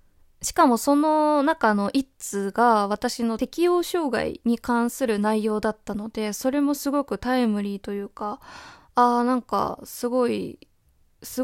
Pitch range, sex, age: 215-275 Hz, female, 20-39